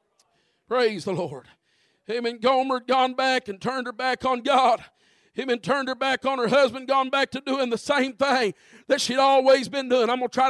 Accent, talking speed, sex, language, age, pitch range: American, 225 wpm, male, English, 50-69, 265-325 Hz